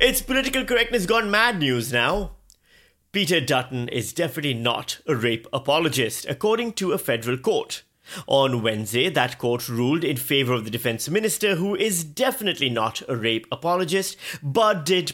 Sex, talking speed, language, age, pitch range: male, 160 wpm, English, 30-49, 125-175 Hz